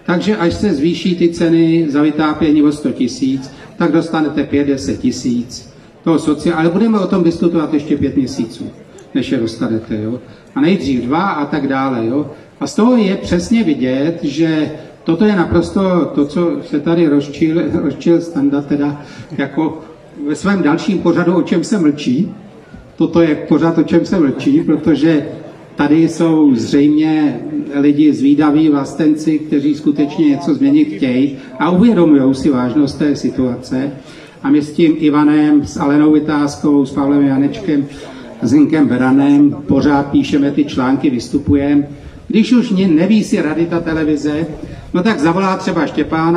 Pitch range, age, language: 150-195 Hz, 40-59, Czech